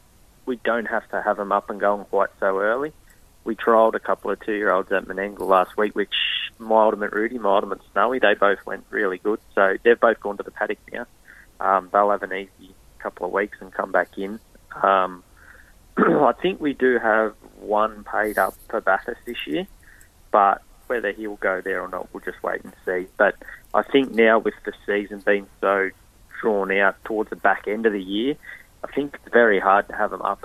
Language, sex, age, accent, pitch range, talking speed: English, male, 20-39, Australian, 95-110 Hz, 205 wpm